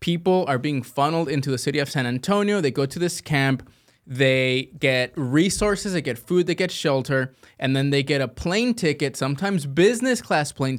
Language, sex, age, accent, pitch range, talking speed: English, male, 20-39, American, 135-175 Hz, 195 wpm